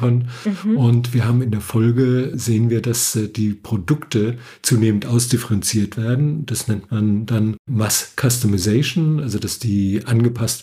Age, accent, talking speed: 50-69, German, 135 wpm